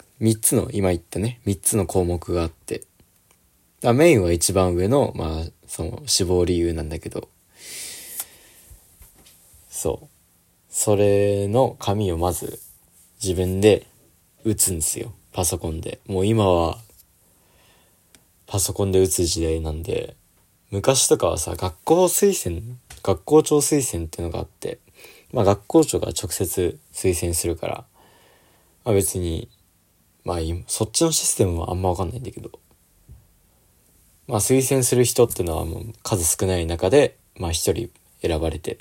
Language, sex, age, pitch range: Japanese, male, 20-39, 85-115 Hz